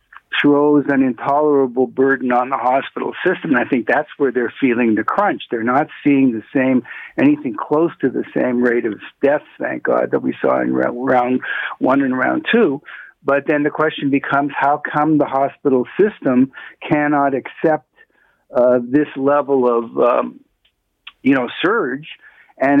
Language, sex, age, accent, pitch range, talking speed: English, male, 60-79, American, 130-145 Hz, 165 wpm